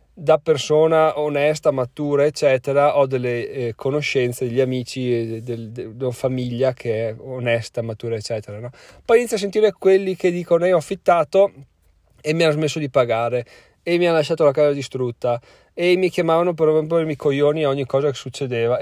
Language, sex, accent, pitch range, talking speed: Italian, male, native, 125-150 Hz, 180 wpm